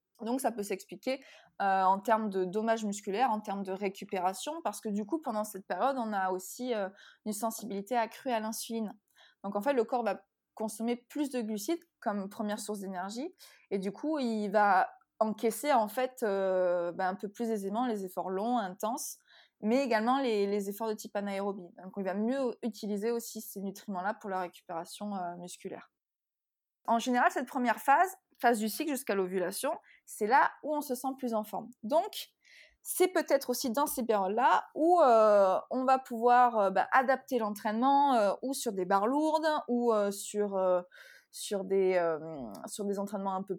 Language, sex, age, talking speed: French, female, 20-39, 185 wpm